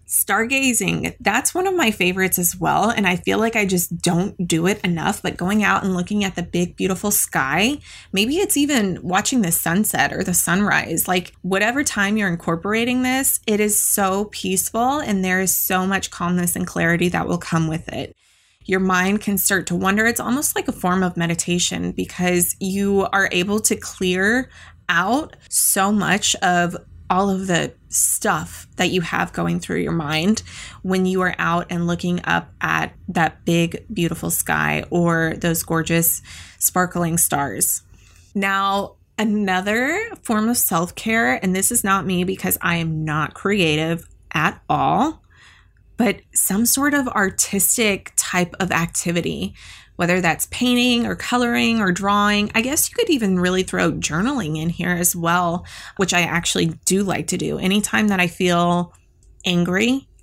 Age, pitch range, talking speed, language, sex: 20-39, 170-205 Hz, 165 wpm, English, female